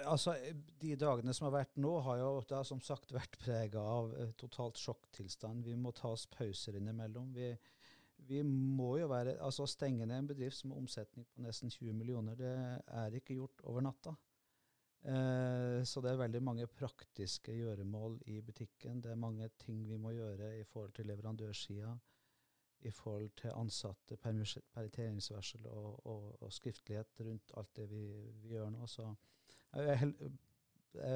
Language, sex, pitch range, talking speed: English, male, 110-130 Hz, 165 wpm